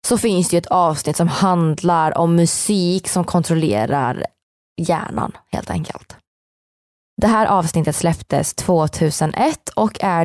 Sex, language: female, Swedish